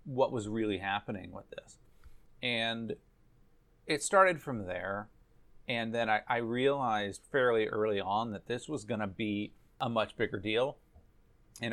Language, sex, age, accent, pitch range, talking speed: English, male, 30-49, American, 105-125 Hz, 155 wpm